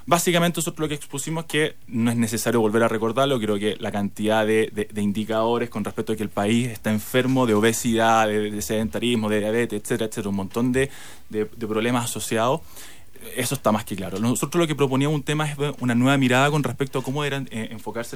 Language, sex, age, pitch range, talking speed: Spanish, male, 20-39, 110-140 Hz, 220 wpm